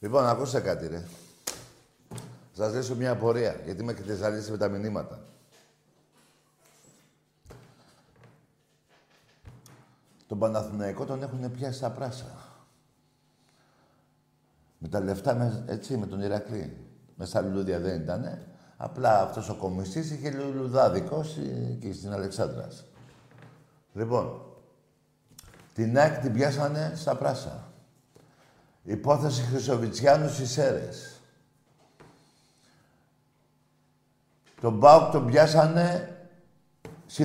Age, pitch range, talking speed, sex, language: 60-79, 105-145 Hz, 90 wpm, male, Greek